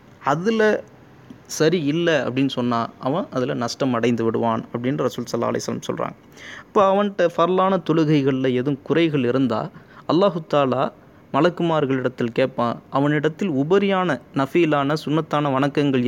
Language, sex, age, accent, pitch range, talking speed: Tamil, male, 20-39, native, 125-155 Hz, 110 wpm